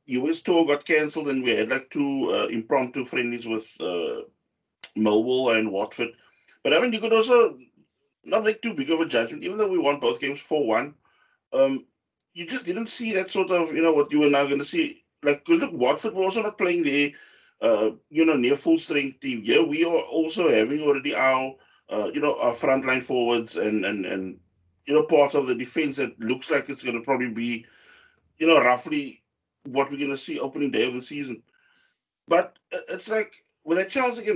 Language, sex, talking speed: English, male, 210 wpm